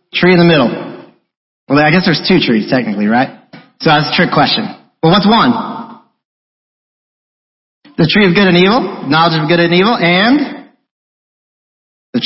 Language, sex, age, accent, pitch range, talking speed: English, male, 40-59, American, 140-210 Hz, 160 wpm